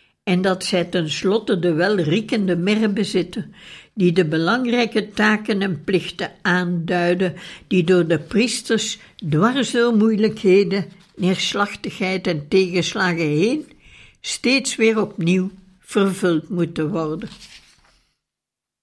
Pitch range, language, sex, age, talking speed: 180-225 Hz, Dutch, female, 60-79, 100 wpm